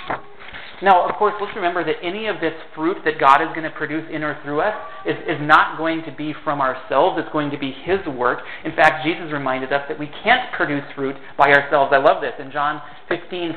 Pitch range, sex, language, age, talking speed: 155-195 Hz, male, English, 40-59, 230 wpm